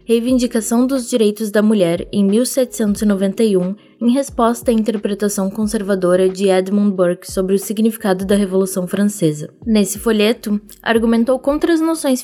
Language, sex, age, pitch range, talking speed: Portuguese, female, 20-39, 185-230 Hz, 130 wpm